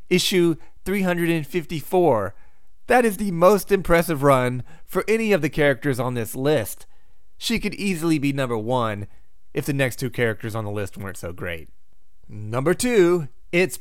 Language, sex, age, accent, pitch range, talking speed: English, male, 30-49, American, 110-160 Hz, 155 wpm